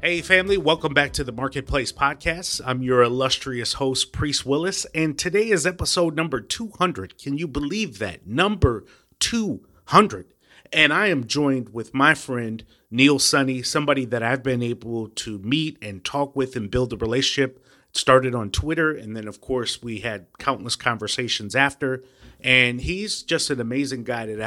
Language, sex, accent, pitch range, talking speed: English, male, American, 115-145 Hz, 165 wpm